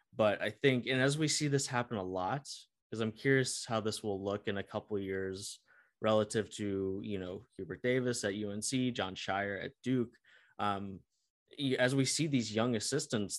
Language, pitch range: English, 100-120 Hz